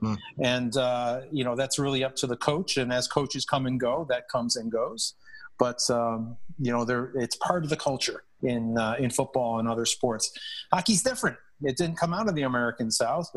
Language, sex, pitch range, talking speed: English, male, 120-145 Hz, 210 wpm